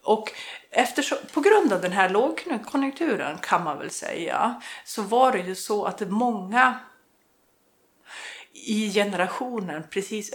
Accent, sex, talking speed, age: native, female, 120 wpm, 30-49